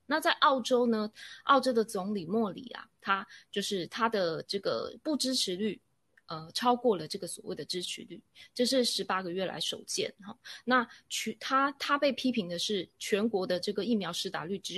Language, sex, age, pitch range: Chinese, female, 20-39, 175-235 Hz